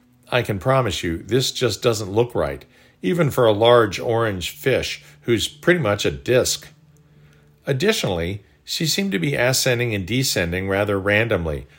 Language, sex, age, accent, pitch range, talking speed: English, male, 50-69, American, 95-130 Hz, 155 wpm